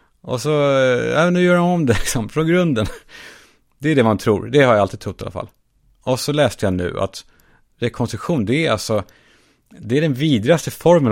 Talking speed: 205 wpm